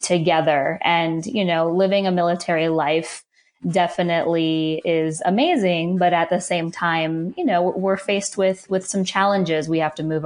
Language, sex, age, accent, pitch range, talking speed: English, female, 20-39, American, 165-190 Hz, 165 wpm